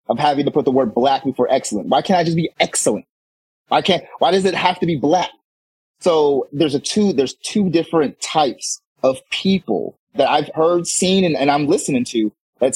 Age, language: 30-49, English